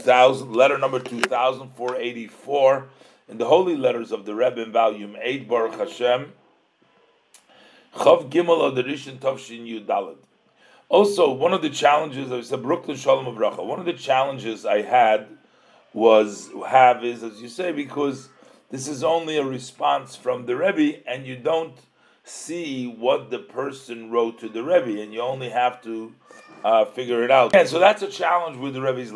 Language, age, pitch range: English, 40-59, 115-150 Hz